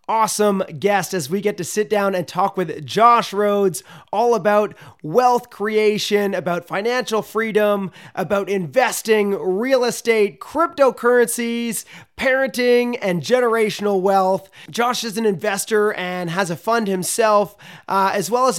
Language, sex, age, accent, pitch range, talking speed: English, male, 30-49, American, 180-215 Hz, 135 wpm